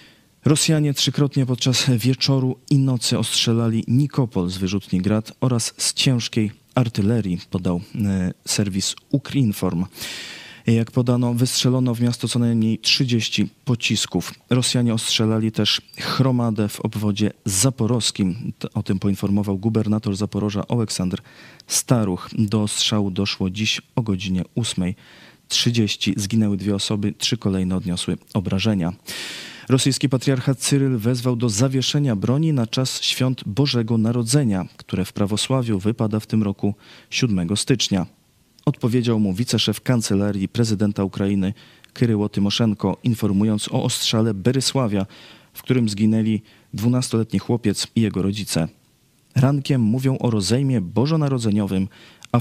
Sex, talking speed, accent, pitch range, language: male, 120 wpm, native, 100-125 Hz, Polish